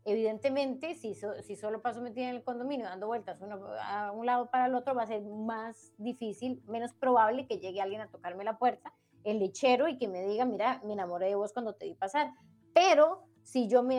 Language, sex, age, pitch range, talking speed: Spanish, female, 30-49, 215-275 Hz, 225 wpm